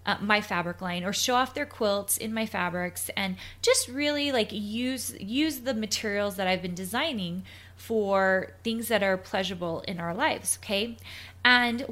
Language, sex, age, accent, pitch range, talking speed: English, female, 20-39, American, 190-235 Hz, 170 wpm